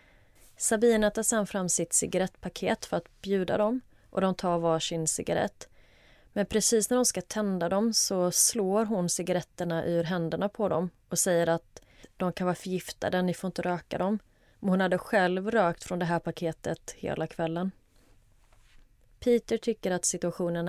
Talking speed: 170 wpm